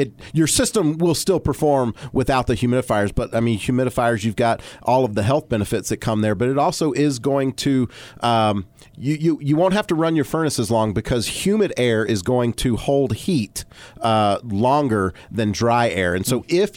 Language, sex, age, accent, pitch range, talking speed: English, male, 40-59, American, 105-125 Hz, 200 wpm